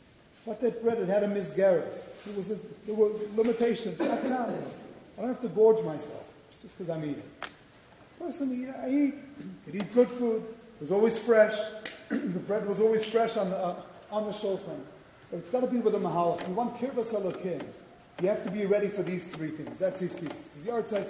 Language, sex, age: English, male, 30-49